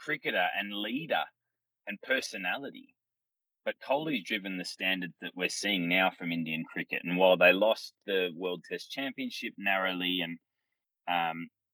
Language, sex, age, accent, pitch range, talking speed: English, male, 20-39, Australian, 90-100 Hz, 145 wpm